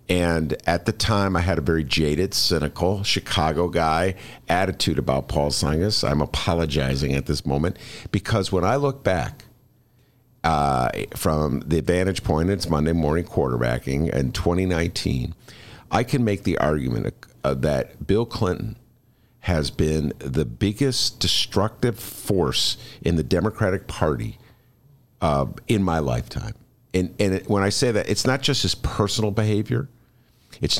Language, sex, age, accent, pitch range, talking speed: English, male, 50-69, American, 80-110 Hz, 140 wpm